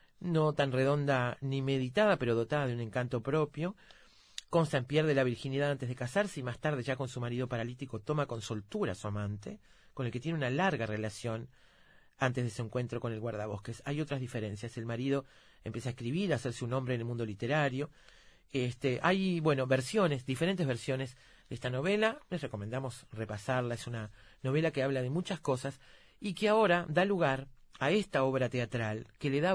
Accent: Argentinian